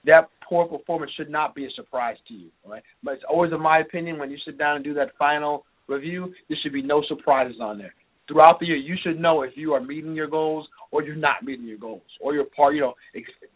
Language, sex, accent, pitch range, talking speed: English, male, American, 145-165 Hz, 255 wpm